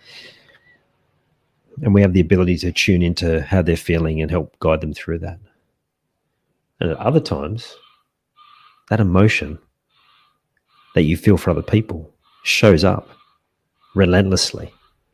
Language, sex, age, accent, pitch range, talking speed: English, male, 40-59, Australian, 85-115 Hz, 125 wpm